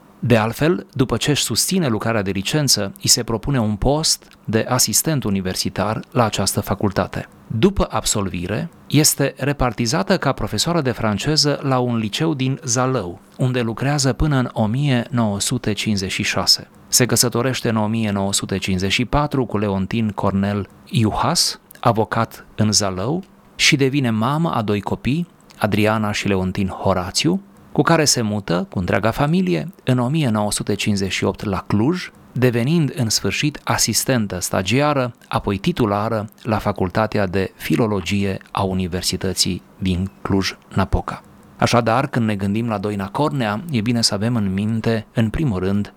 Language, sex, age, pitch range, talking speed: Romanian, male, 30-49, 100-130 Hz, 130 wpm